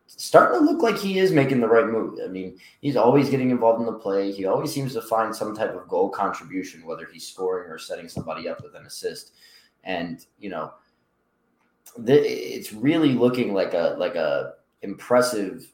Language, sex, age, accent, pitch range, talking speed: English, male, 20-39, American, 90-115 Hz, 195 wpm